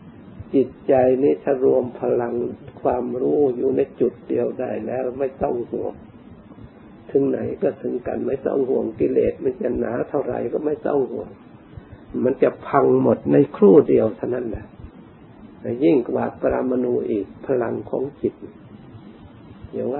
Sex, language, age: male, Thai, 50-69